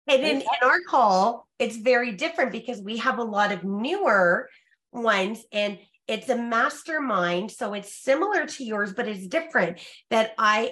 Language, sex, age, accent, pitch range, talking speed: English, female, 30-49, American, 200-250 Hz, 170 wpm